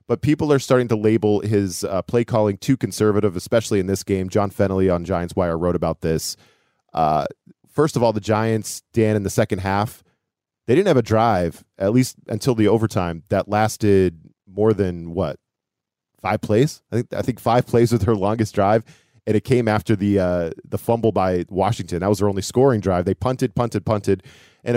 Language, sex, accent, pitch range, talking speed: English, male, American, 95-115 Hz, 200 wpm